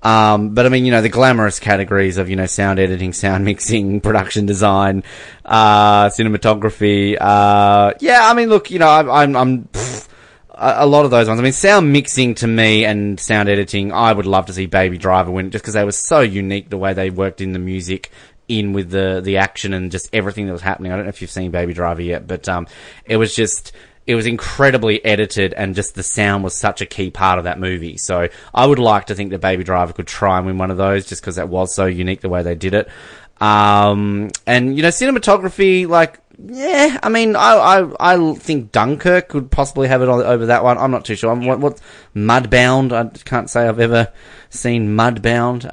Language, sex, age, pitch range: English, male, 20-39, 95-125 Hz